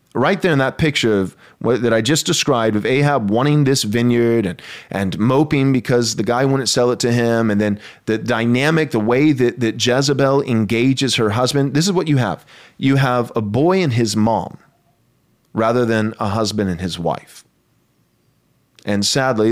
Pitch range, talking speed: 105-130 Hz, 185 wpm